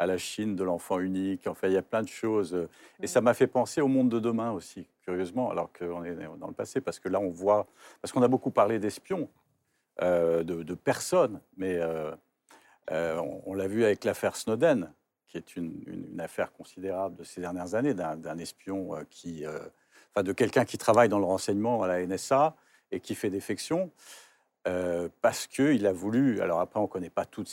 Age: 50-69